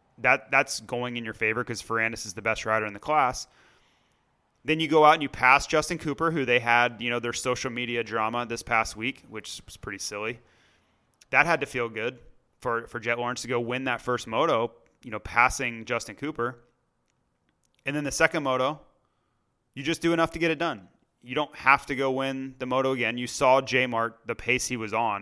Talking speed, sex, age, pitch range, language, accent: 215 wpm, male, 30-49, 115-140 Hz, English, American